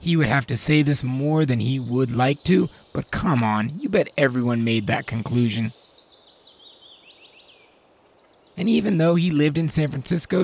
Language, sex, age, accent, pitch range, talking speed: English, male, 30-49, American, 120-165 Hz, 165 wpm